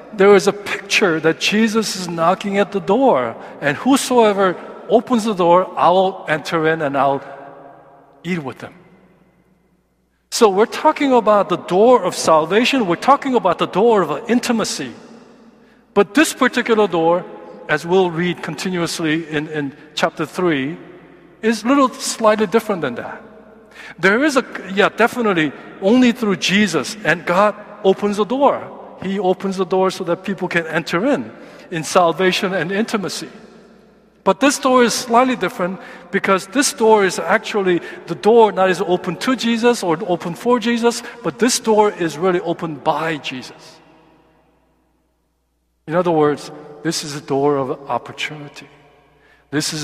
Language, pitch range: Korean, 155-220 Hz